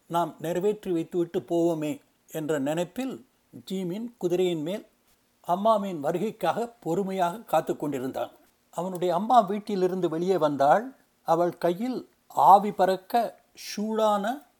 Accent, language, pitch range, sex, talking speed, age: native, Tamil, 170-225 Hz, male, 100 wpm, 60-79